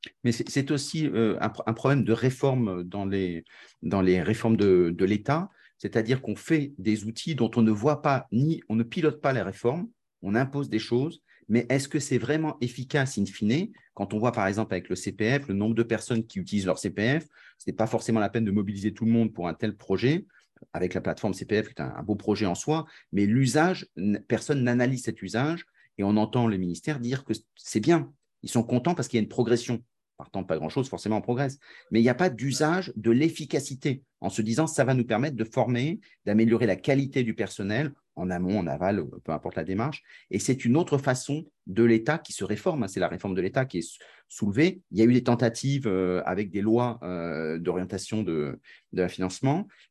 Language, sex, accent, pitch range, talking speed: French, male, French, 105-135 Hz, 215 wpm